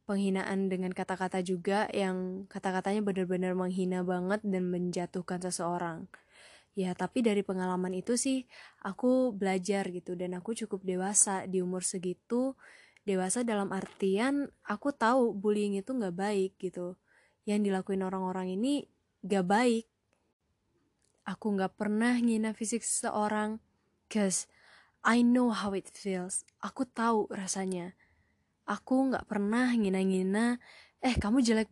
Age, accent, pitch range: 20-39, native, 190-230 Hz